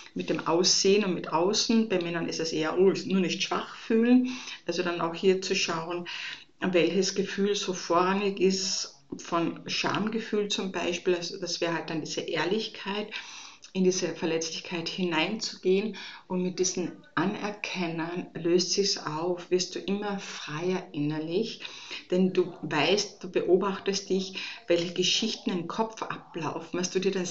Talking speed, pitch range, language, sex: 150 wpm, 175-200 Hz, German, female